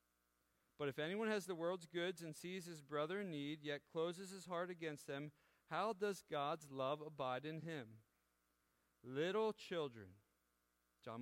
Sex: male